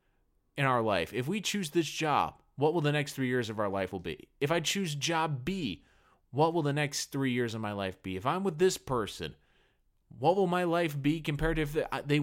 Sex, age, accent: male, 30-49, American